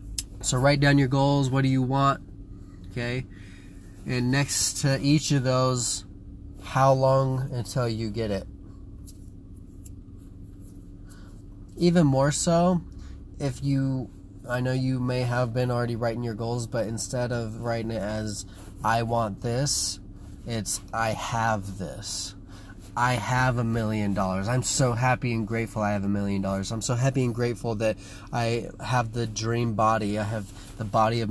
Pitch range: 95-125 Hz